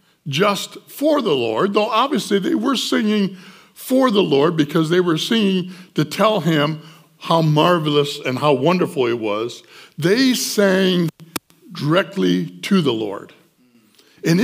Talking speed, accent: 135 wpm, American